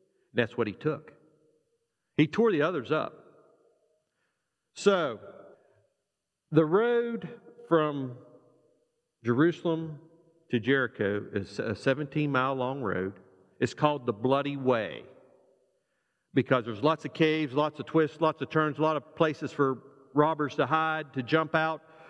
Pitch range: 125-165 Hz